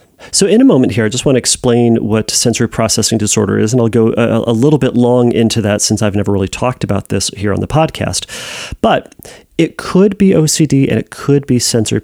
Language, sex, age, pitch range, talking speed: English, male, 40-59, 105-130 Hz, 230 wpm